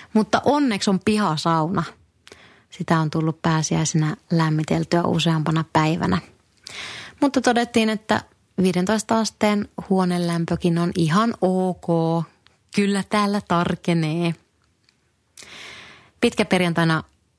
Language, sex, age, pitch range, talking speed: Finnish, female, 30-49, 160-185 Hz, 85 wpm